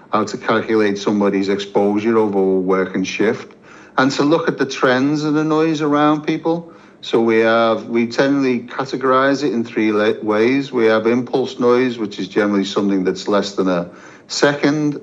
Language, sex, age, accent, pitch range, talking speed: English, male, 50-69, British, 100-125 Hz, 170 wpm